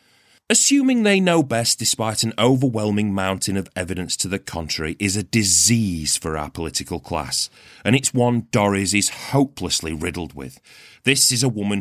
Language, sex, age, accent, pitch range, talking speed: English, male, 30-49, British, 100-165 Hz, 165 wpm